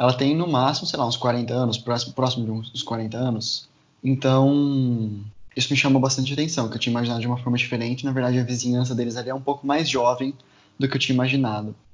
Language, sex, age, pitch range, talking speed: Portuguese, male, 20-39, 120-140 Hz, 225 wpm